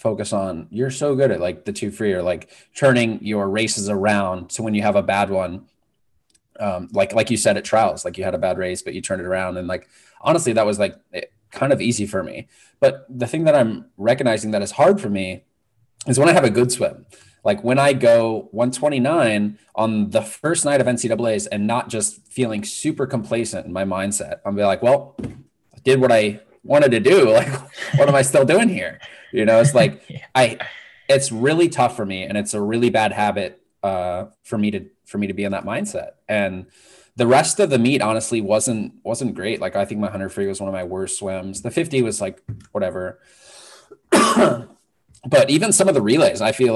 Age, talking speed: 20-39, 220 wpm